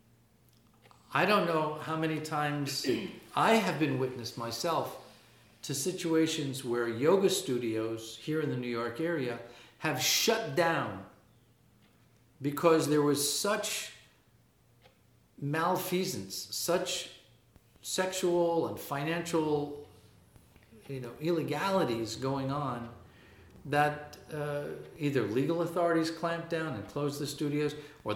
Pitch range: 115-160 Hz